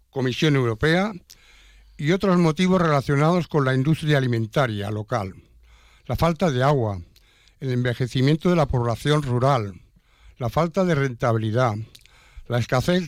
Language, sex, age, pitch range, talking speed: Spanish, male, 60-79, 120-165 Hz, 125 wpm